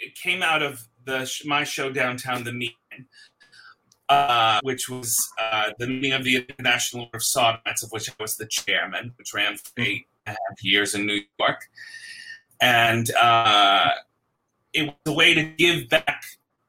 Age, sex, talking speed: 30-49, male, 175 wpm